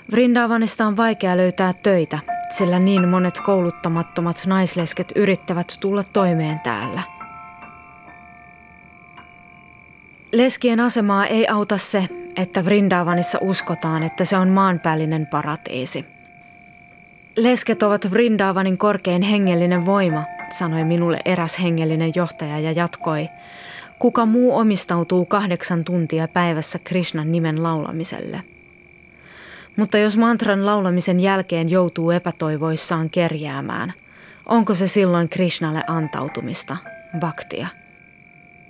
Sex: female